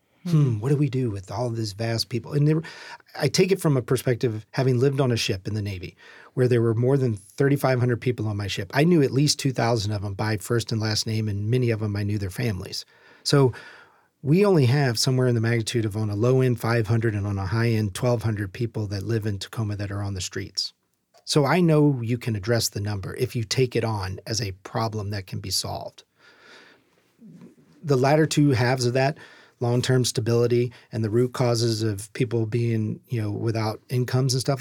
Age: 40-59